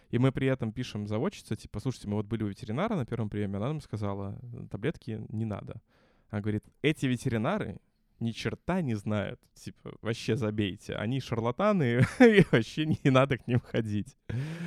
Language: Russian